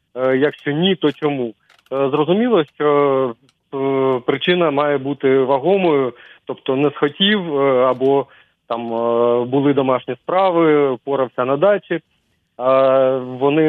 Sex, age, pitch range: male, 30-49, 130-155 Hz